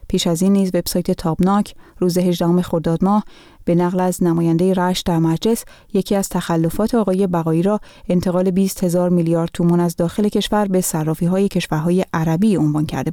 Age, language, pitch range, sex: 30-49, Persian, 170-200 Hz, female